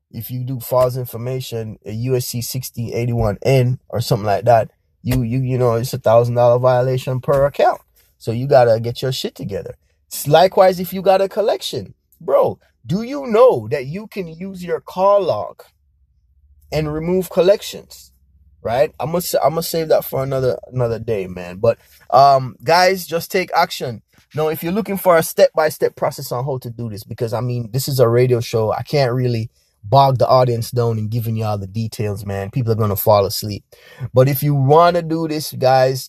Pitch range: 115-135 Hz